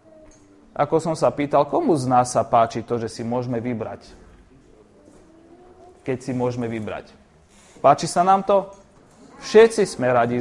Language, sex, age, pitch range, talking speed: Slovak, male, 30-49, 140-200 Hz, 145 wpm